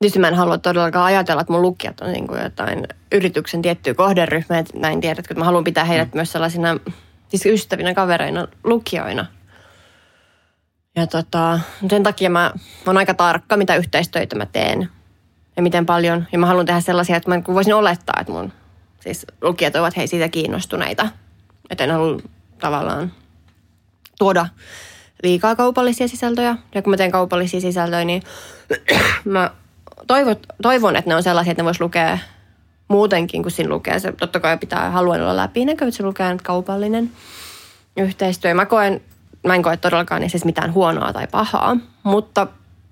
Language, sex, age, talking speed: Finnish, female, 20-39, 165 wpm